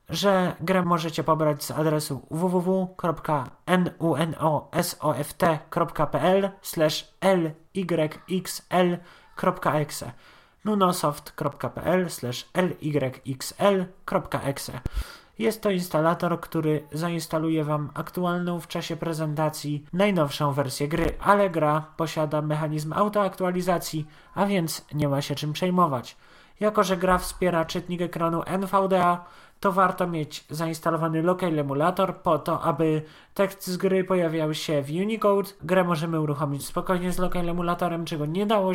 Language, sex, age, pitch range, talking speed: Polish, male, 30-49, 150-180 Hz, 100 wpm